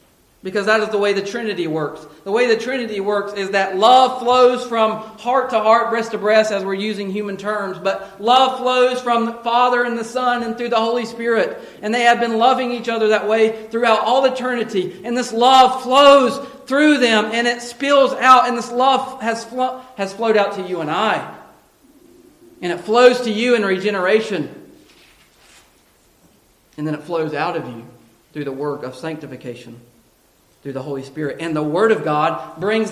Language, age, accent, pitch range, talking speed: English, 40-59, American, 175-235 Hz, 195 wpm